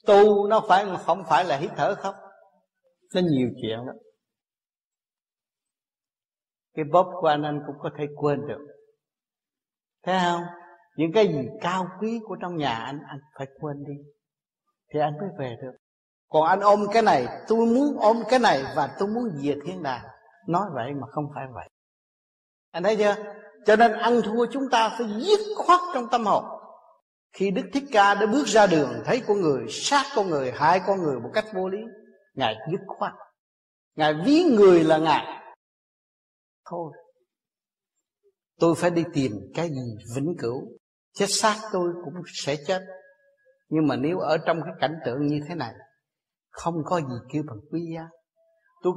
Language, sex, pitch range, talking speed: Vietnamese, male, 150-220 Hz, 175 wpm